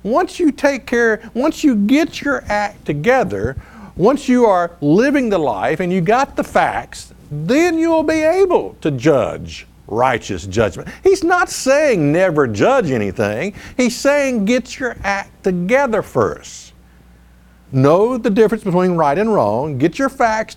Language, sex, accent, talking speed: English, male, American, 150 wpm